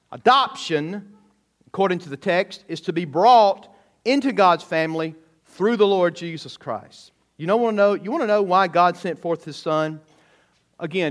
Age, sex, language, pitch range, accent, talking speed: 40-59, male, English, 170-220 Hz, American, 180 wpm